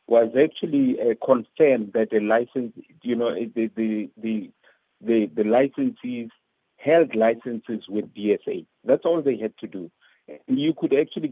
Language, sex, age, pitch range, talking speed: English, male, 50-69, 115-155 Hz, 150 wpm